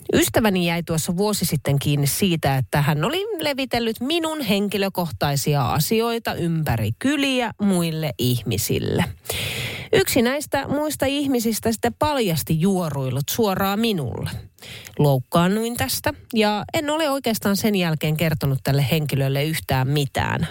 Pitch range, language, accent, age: 135-205 Hz, Finnish, native, 30-49